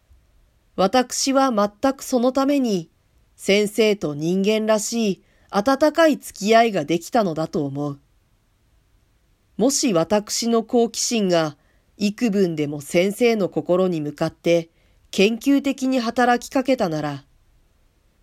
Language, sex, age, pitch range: Japanese, female, 40-59, 150-220 Hz